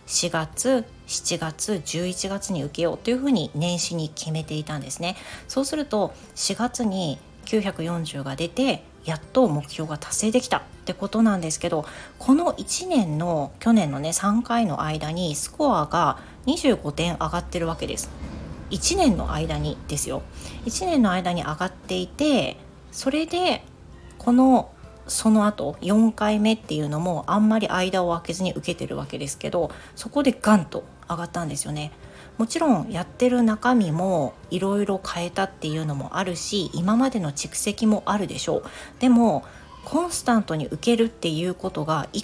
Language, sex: Japanese, female